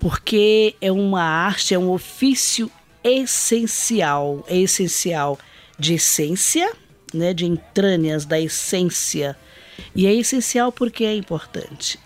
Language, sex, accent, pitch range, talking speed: Portuguese, female, Brazilian, 160-215 Hz, 115 wpm